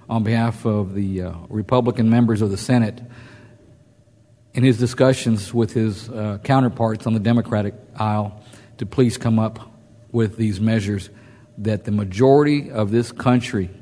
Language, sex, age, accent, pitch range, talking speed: English, male, 50-69, American, 105-120 Hz, 150 wpm